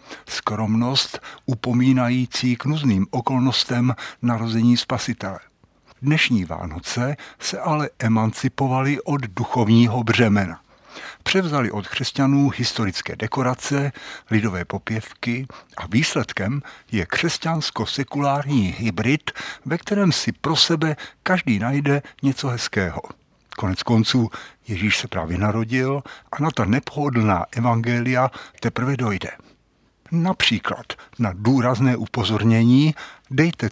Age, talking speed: 60-79, 95 wpm